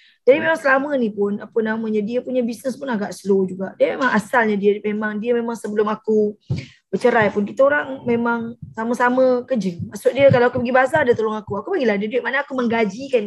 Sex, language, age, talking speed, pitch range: female, Malay, 20-39, 205 wpm, 215-265 Hz